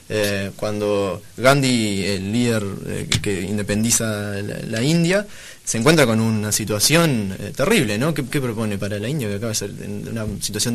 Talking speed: 180 wpm